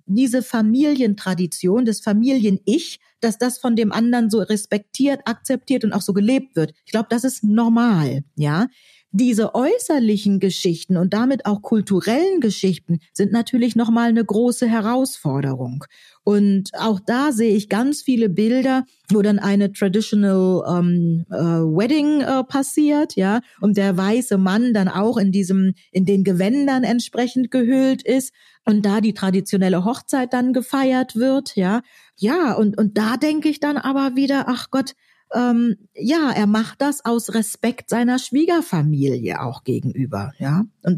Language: German